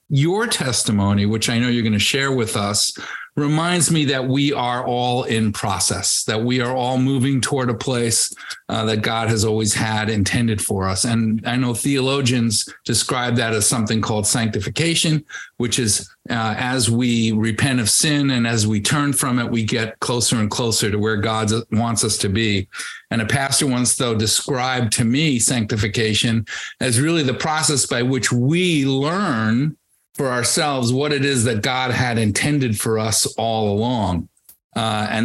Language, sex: English, male